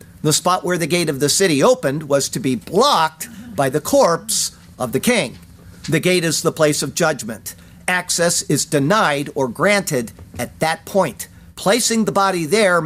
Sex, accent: male, American